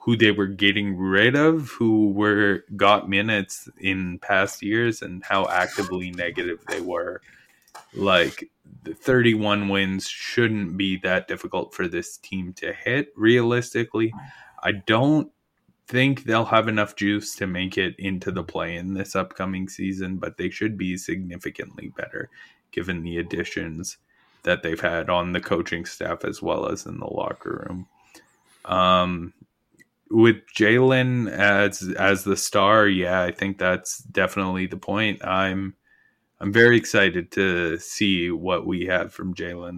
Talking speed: 150 wpm